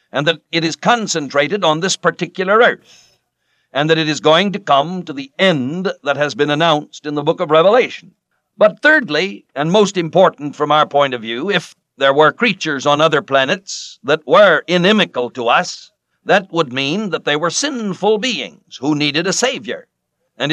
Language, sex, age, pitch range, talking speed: English, male, 60-79, 145-190 Hz, 185 wpm